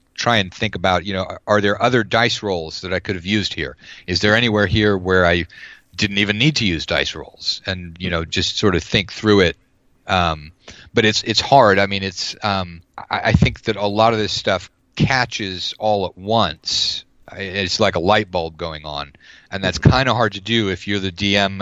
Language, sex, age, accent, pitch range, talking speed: English, male, 40-59, American, 85-105 Hz, 220 wpm